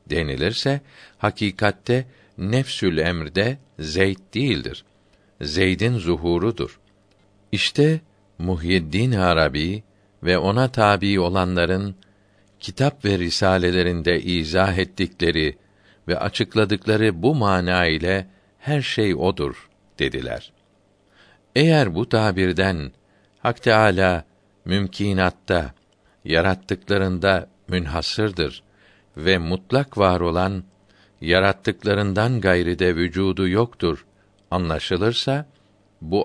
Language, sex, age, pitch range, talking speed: Turkish, male, 50-69, 90-105 Hz, 80 wpm